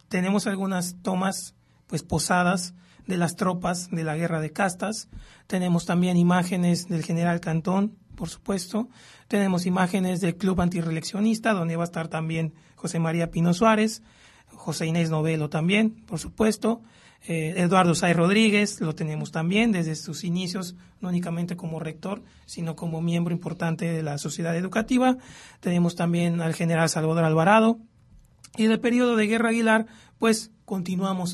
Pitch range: 170-210 Hz